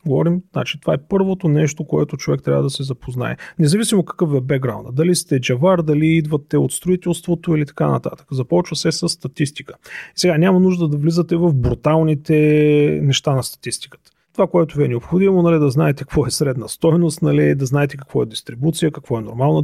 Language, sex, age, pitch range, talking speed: Bulgarian, male, 30-49, 130-165 Hz, 185 wpm